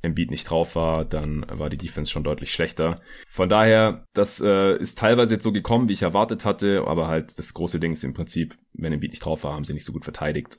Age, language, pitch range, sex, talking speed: 20-39, German, 80-100 Hz, male, 255 wpm